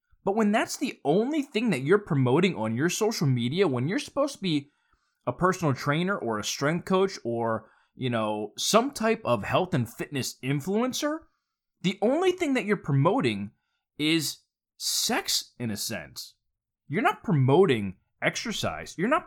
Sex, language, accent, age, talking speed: male, English, American, 20-39, 160 wpm